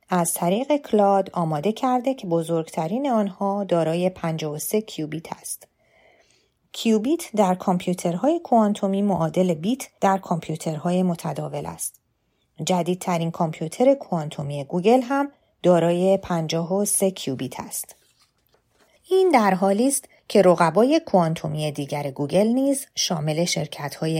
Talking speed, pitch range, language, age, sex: 105 wpm, 160-220 Hz, Persian, 30-49, female